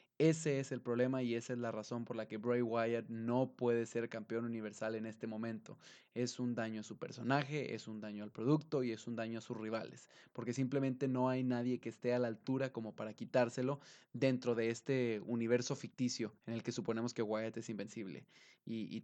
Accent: Mexican